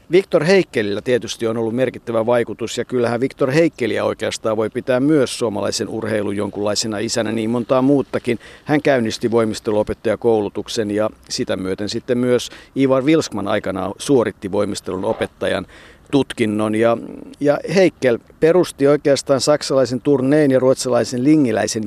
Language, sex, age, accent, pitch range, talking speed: Finnish, male, 50-69, native, 110-135 Hz, 130 wpm